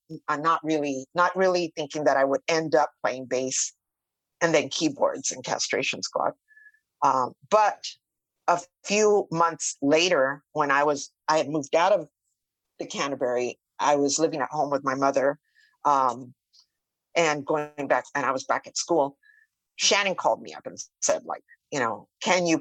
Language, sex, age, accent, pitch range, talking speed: English, female, 50-69, American, 145-215 Hz, 165 wpm